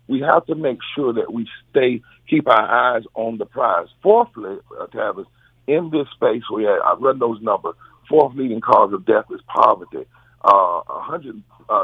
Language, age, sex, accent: English, 50-69, male, American